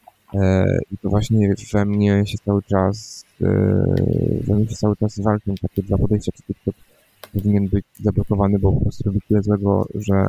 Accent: native